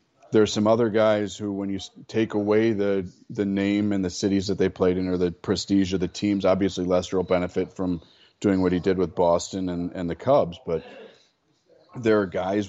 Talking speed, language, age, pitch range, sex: 215 wpm, English, 30-49, 90-100 Hz, male